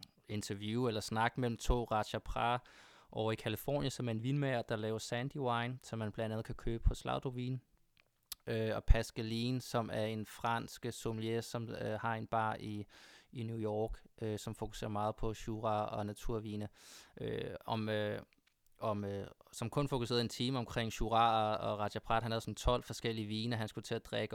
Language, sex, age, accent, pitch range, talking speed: Danish, male, 20-39, native, 110-120 Hz, 170 wpm